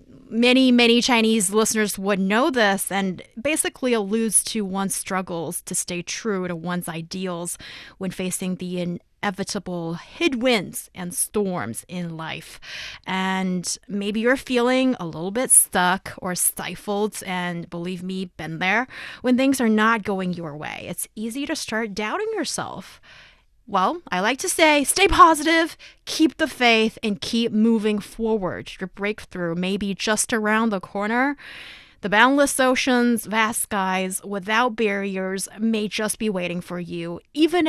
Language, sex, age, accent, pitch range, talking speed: English, female, 20-39, American, 185-240 Hz, 145 wpm